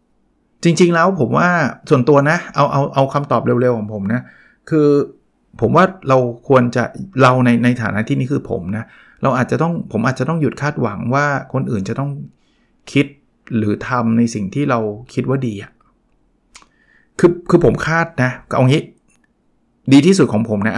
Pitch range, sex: 120-155 Hz, male